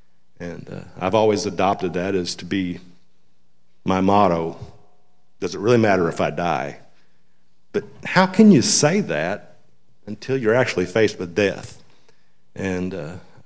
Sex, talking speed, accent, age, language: male, 140 wpm, American, 50-69, English